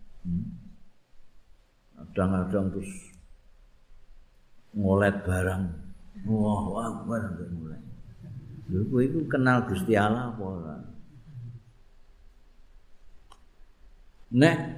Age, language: 50-69, Indonesian